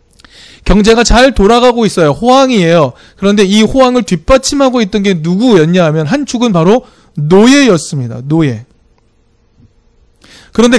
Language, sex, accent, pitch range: Korean, male, native, 170-240 Hz